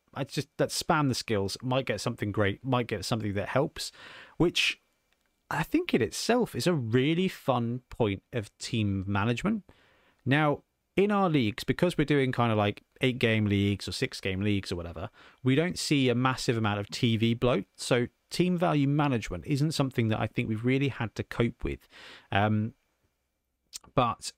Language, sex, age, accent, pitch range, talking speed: English, male, 30-49, British, 110-145 Hz, 180 wpm